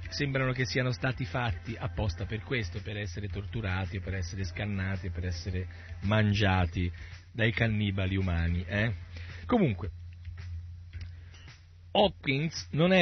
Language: Italian